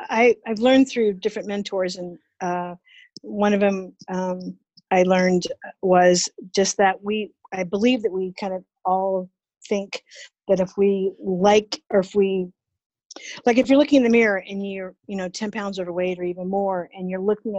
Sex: female